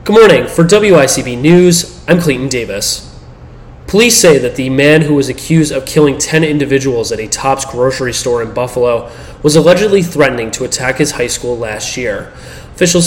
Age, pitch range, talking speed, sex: 30-49, 130-155 Hz, 175 wpm, male